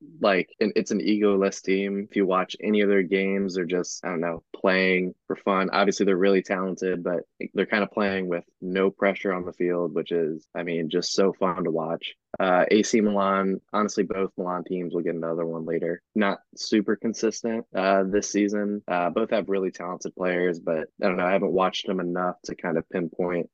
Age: 20-39